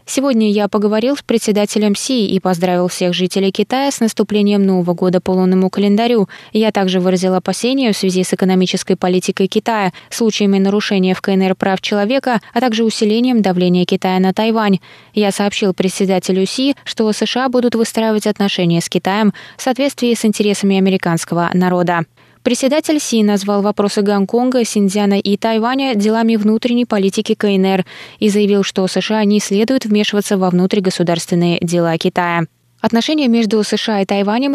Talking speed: 150 wpm